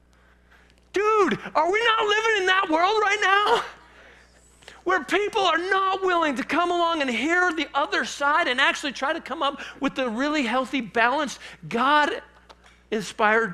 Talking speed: 155 wpm